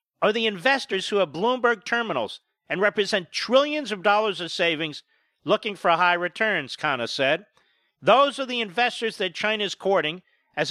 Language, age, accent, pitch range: English, 50-69, American, 175-230 Hz